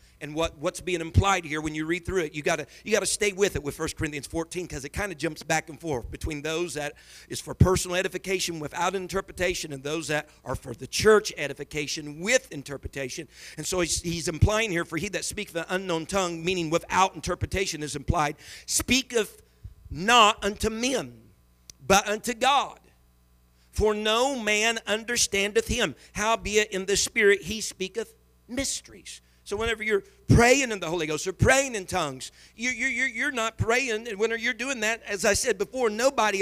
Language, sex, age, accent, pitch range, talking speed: English, male, 50-69, American, 165-230 Hz, 185 wpm